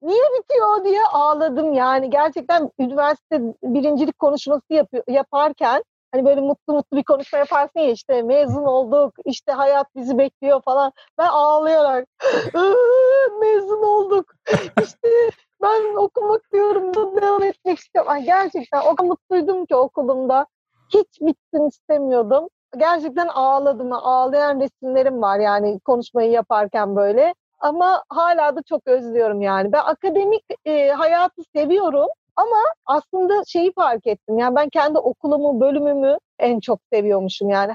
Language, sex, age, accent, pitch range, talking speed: Turkish, female, 40-59, native, 260-340 Hz, 130 wpm